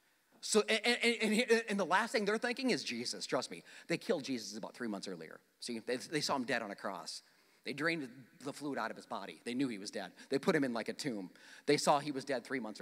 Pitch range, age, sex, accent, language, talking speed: 210-300 Hz, 40-59, male, American, English, 260 wpm